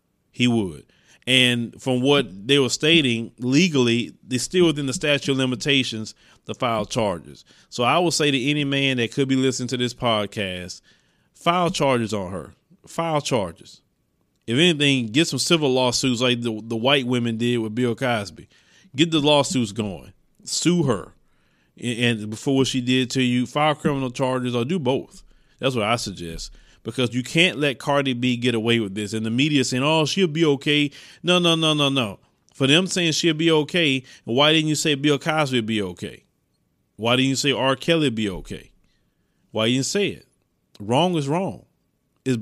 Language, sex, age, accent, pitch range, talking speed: English, male, 30-49, American, 120-150 Hz, 190 wpm